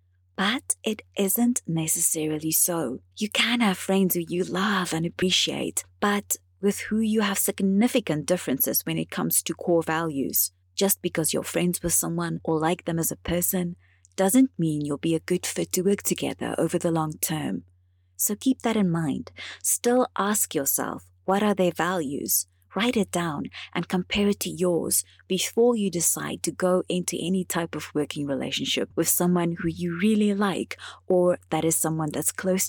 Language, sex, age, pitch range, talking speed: English, female, 30-49, 140-190 Hz, 175 wpm